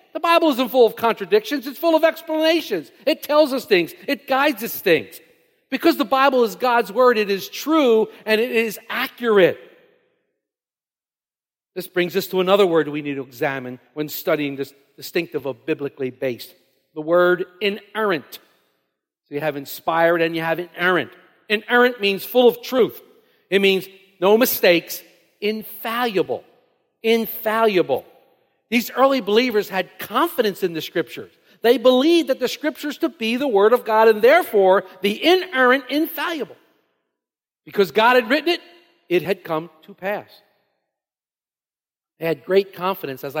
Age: 50-69